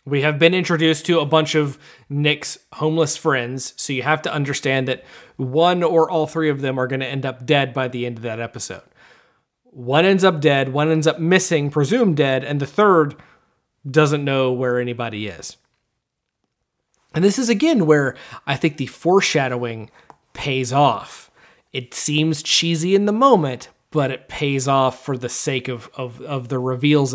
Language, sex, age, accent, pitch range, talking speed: English, male, 30-49, American, 135-170 Hz, 180 wpm